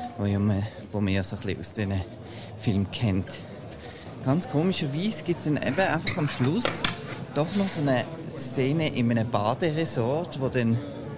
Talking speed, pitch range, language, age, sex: 145 wpm, 110-140 Hz, German, 20-39, male